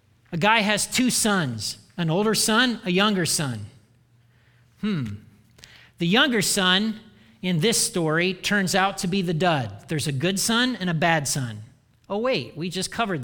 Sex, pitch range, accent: male, 135-210 Hz, American